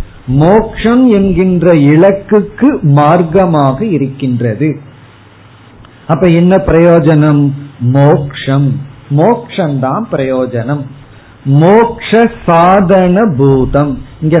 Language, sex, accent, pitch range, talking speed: Tamil, male, native, 135-190 Hz, 55 wpm